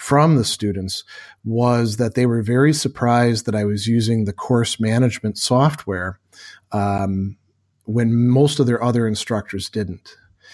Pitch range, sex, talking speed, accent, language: 105-130 Hz, male, 140 wpm, American, English